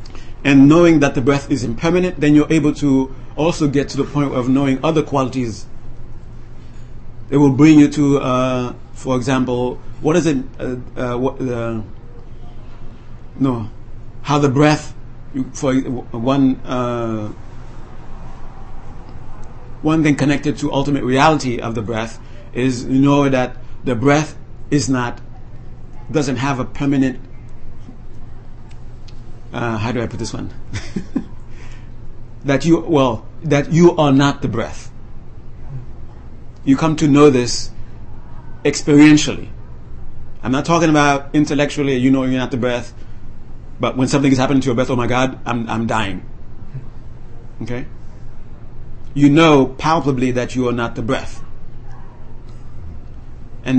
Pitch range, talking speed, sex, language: 120-140 Hz, 135 wpm, male, English